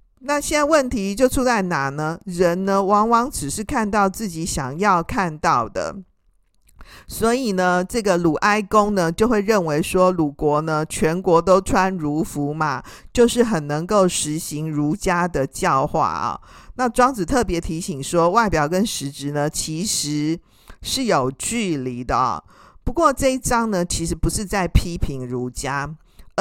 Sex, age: male, 50-69